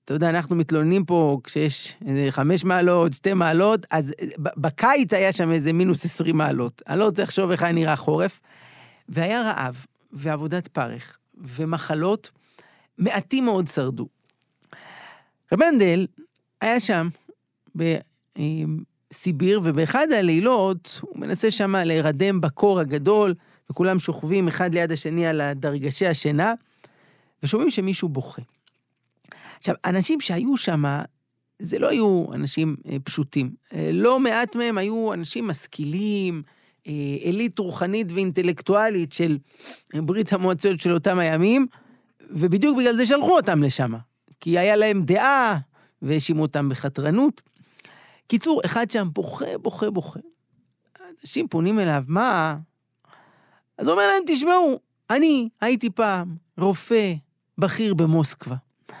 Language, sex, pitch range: Hebrew, male, 155-210 Hz